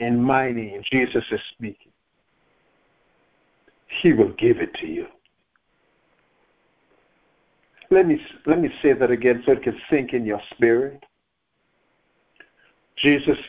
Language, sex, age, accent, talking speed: English, male, 60-79, American, 120 wpm